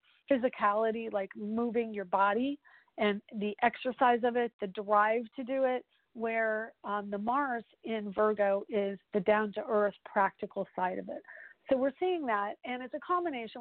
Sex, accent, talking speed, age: female, American, 170 wpm, 40-59